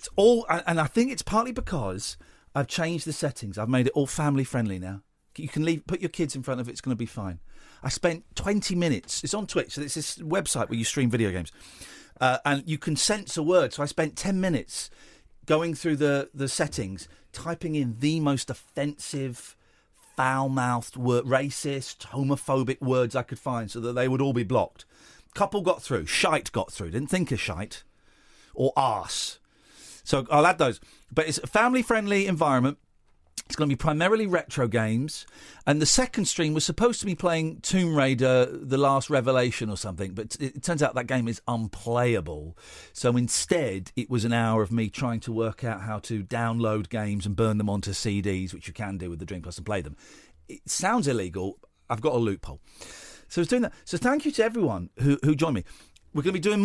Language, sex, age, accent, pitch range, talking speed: English, male, 40-59, British, 110-165 Hz, 205 wpm